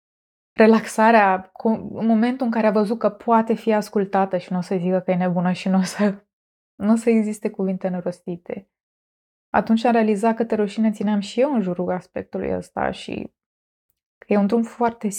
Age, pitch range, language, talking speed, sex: 20-39, 190-225 Hz, Romanian, 180 wpm, female